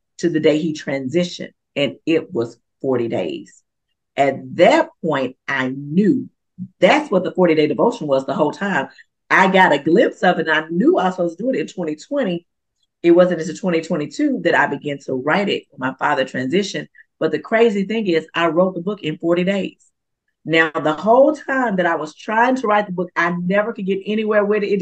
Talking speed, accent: 205 wpm, American